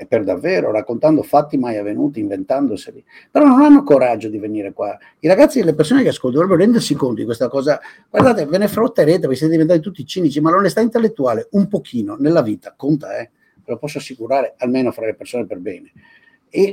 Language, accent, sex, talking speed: Italian, native, male, 200 wpm